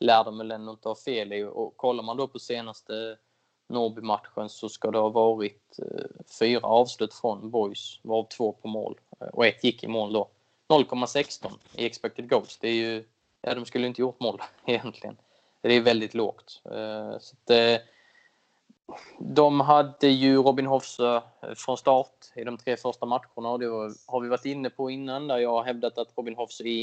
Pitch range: 115-125 Hz